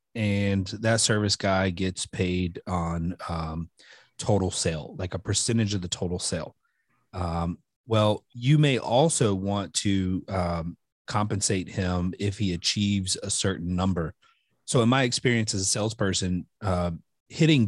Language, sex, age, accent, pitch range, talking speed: English, male, 30-49, American, 95-115 Hz, 145 wpm